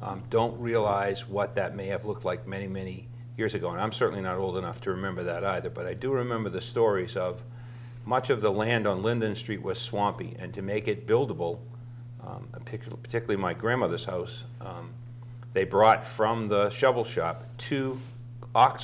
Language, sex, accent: English, male, American